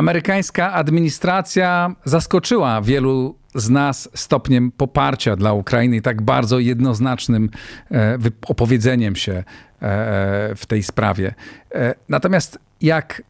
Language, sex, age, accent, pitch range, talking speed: Polish, male, 40-59, native, 110-135 Hz, 95 wpm